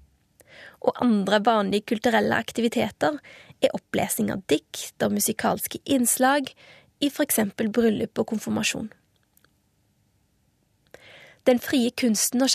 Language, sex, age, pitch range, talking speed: Swedish, female, 20-39, 215-250 Hz, 105 wpm